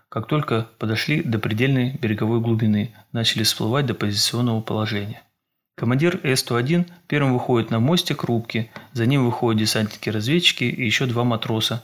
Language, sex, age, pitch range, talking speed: Russian, male, 30-49, 110-135 Hz, 135 wpm